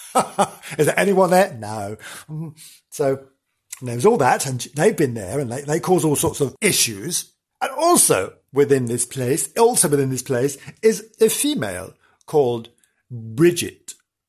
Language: English